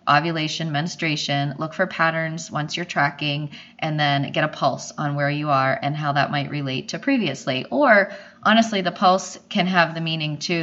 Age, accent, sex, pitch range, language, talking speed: 20-39, American, female, 145-175 Hz, English, 185 wpm